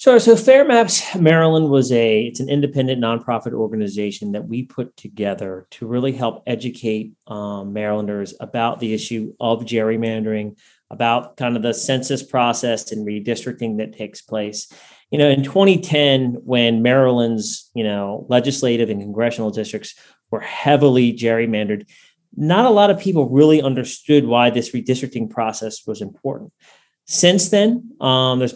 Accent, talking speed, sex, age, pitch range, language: American, 145 wpm, male, 30-49, 115-140 Hz, English